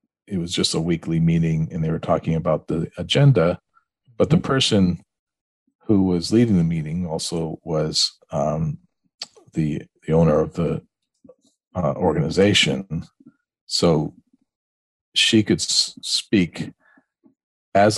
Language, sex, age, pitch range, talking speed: English, male, 40-59, 85-135 Hz, 125 wpm